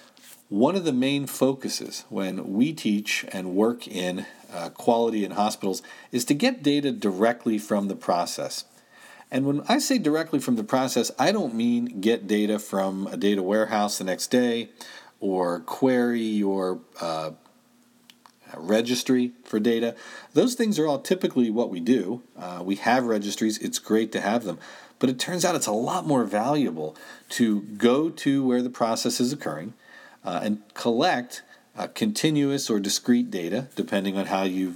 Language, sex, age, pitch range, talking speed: English, male, 50-69, 100-130 Hz, 165 wpm